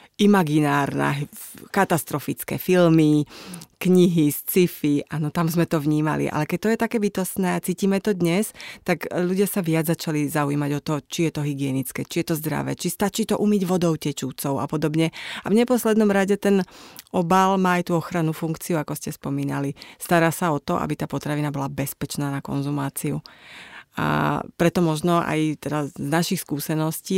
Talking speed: 170 wpm